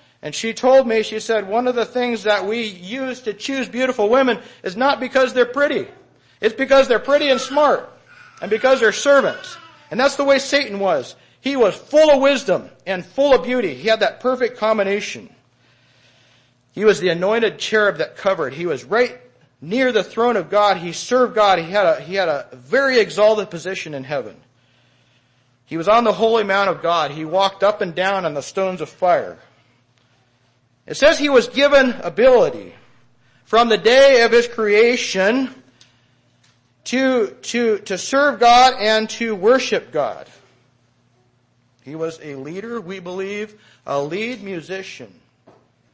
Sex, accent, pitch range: male, American, 155-250 Hz